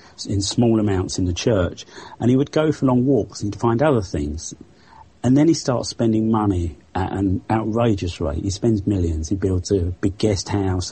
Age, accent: 40-59, British